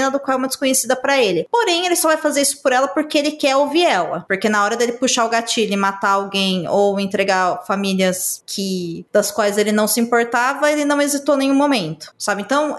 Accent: Brazilian